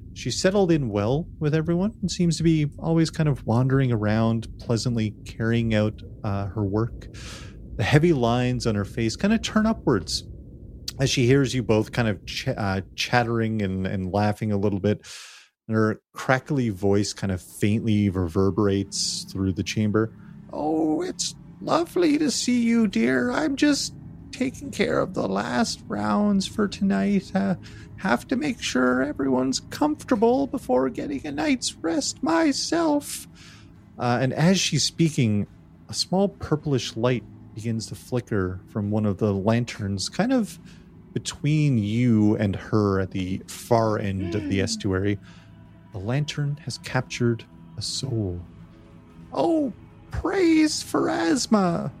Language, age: English, 30-49